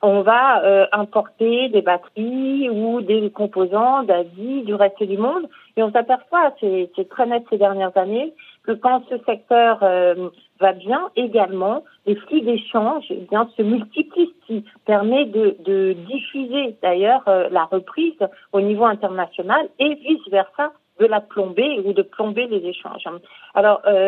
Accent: French